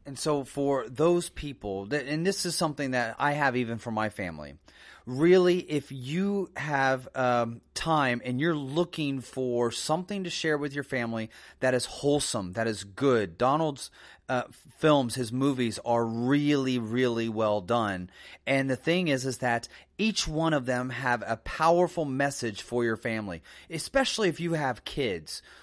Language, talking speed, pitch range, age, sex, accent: English, 165 wpm, 125-160 Hz, 30-49, male, American